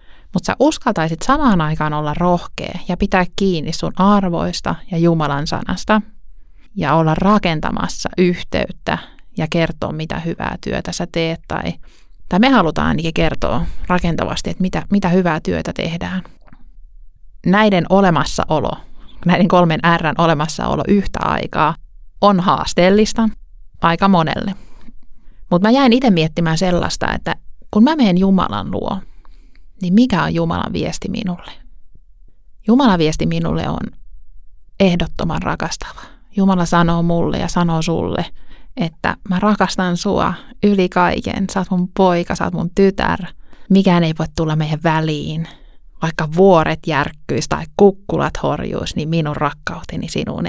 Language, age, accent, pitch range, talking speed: Finnish, 30-49, native, 160-195 Hz, 130 wpm